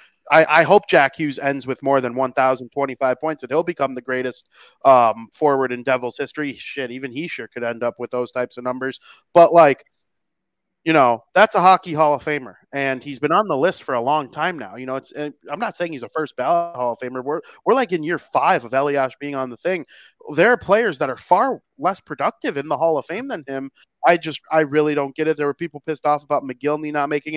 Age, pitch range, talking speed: 30-49, 135-160 Hz, 240 wpm